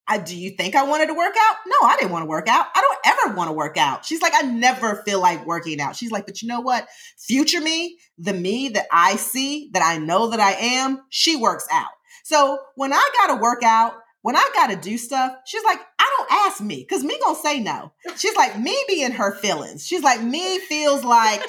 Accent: American